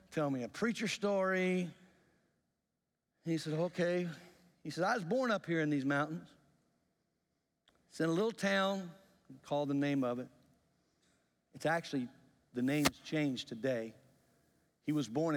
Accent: American